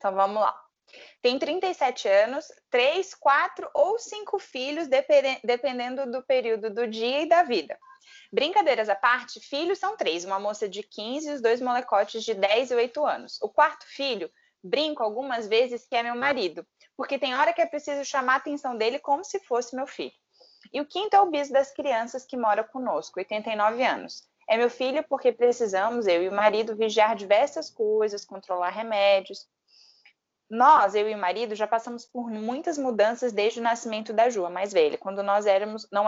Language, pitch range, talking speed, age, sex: Portuguese, 215-285 Hz, 185 wpm, 20-39, female